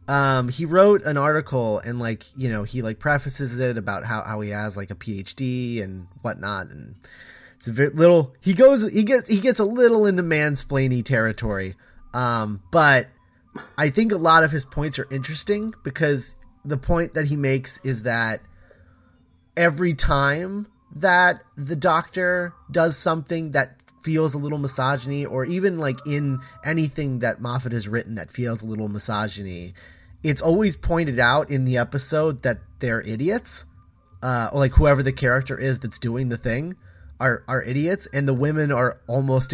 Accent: American